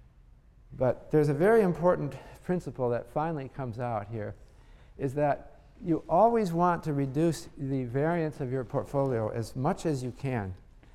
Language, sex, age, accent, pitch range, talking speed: English, male, 50-69, American, 120-155 Hz, 155 wpm